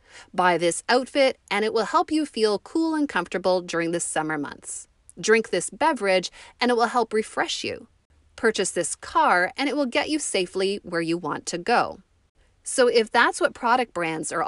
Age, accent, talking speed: 30-49, American, 190 wpm